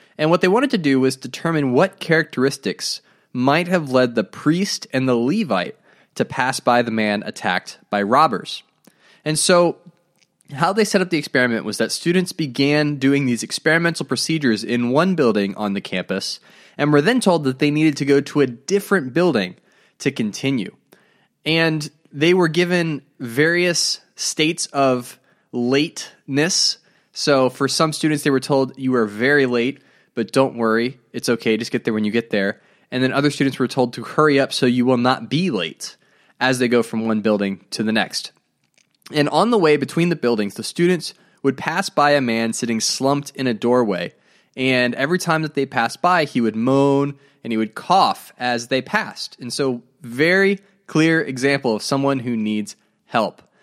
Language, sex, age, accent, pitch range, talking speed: English, male, 20-39, American, 125-165 Hz, 185 wpm